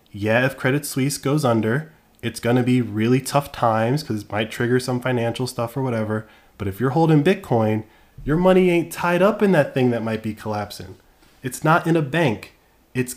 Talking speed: 205 wpm